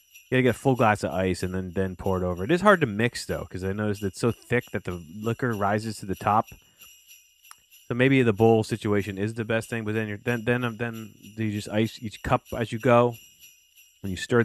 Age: 30-49